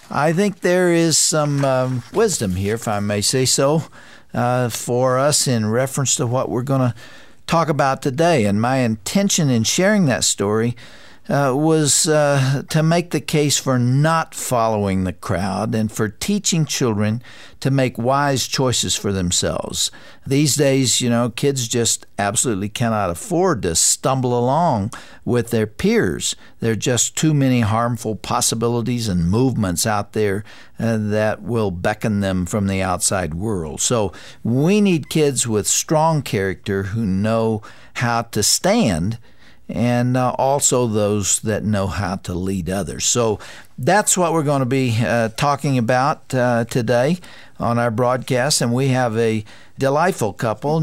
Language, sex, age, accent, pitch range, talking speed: English, male, 60-79, American, 110-145 Hz, 155 wpm